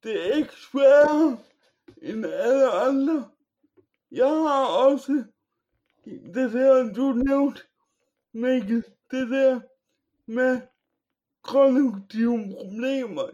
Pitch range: 245-285 Hz